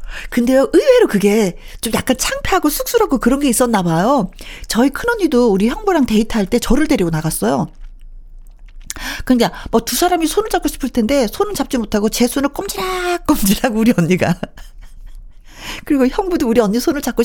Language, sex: Korean, female